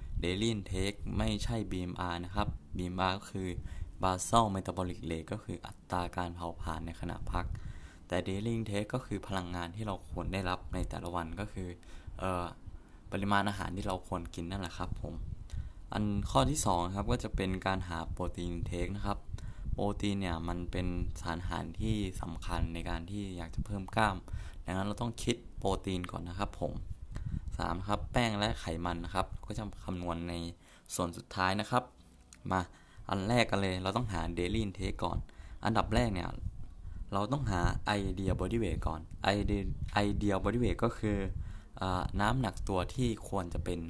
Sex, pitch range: male, 85-105 Hz